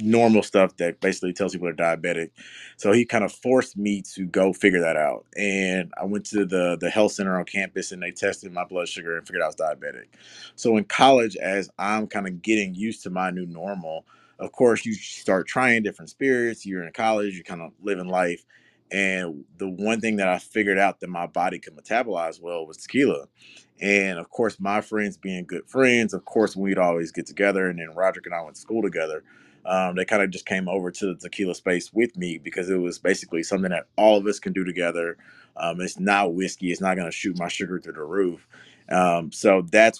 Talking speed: 225 wpm